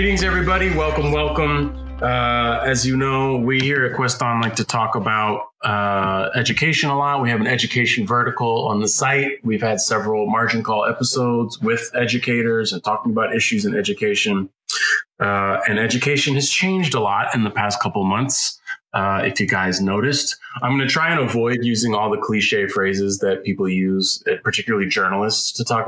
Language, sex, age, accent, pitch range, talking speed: English, male, 30-49, American, 105-135 Hz, 180 wpm